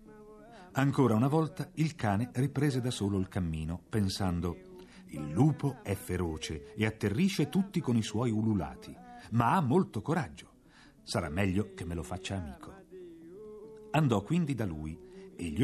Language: Italian